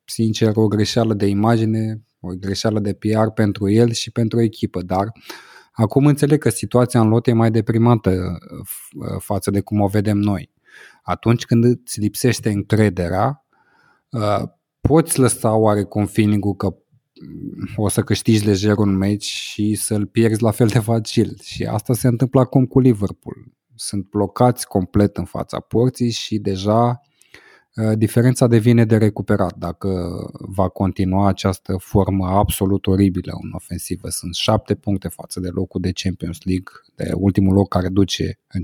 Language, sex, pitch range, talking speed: Romanian, male, 100-125 Hz, 150 wpm